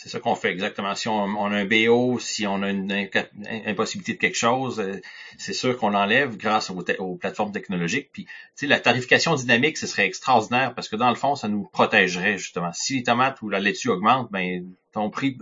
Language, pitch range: French, 90-120 Hz